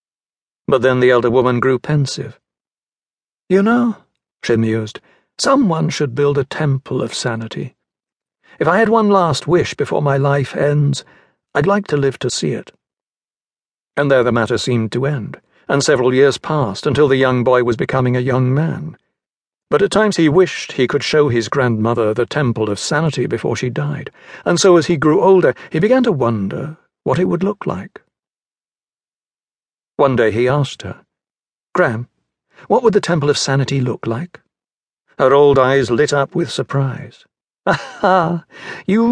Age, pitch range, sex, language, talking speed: 60-79, 125-175 Hz, male, English, 170 wpm